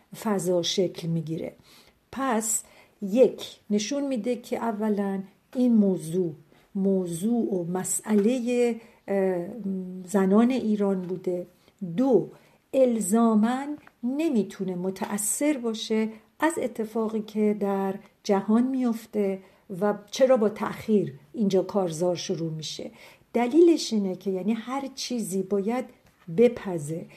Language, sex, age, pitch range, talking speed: Persian, female, 50-69, 190-230 Hz, 95 wpm